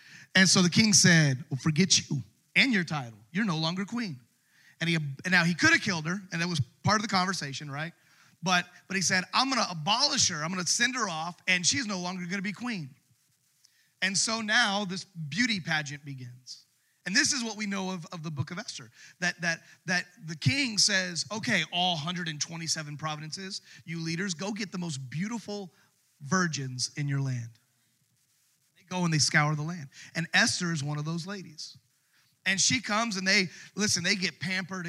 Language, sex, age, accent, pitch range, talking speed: English, male, 30-49, American, 155-190 Hz, 200 wpm